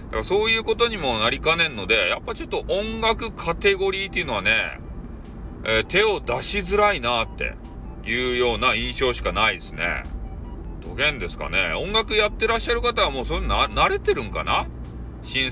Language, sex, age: Japanese, male, 40-59